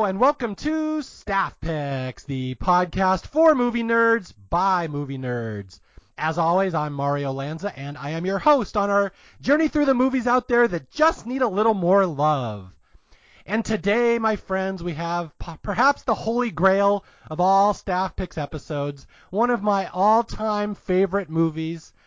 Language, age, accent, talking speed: English, 30-49, American, 160 wpm